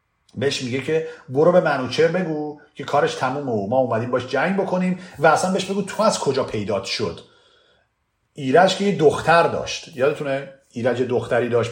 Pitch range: 110-175 Hz